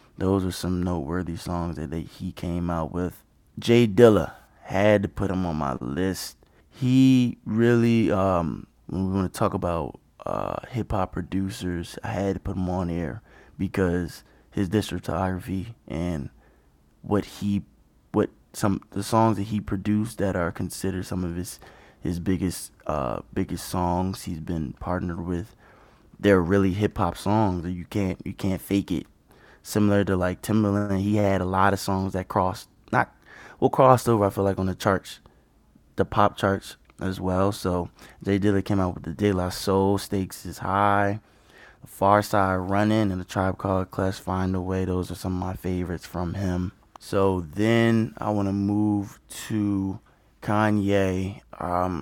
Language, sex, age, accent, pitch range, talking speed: English, male, 20-39, American, 90-100 Hz, 170 wpm